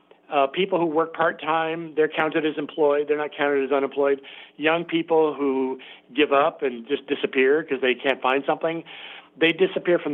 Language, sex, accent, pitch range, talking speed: English, male, American, 135-175 Hz, 180 wpm